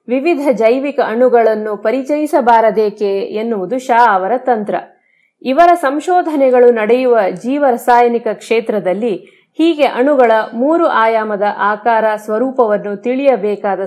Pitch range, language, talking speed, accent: 215-275 Hz, Kannada, 85 wpm, native